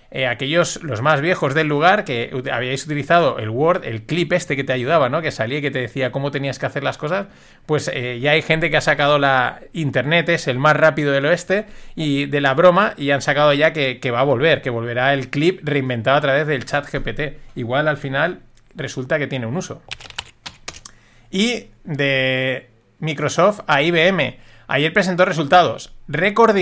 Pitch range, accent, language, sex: 130-170 Hz, Spanish, Spanish, male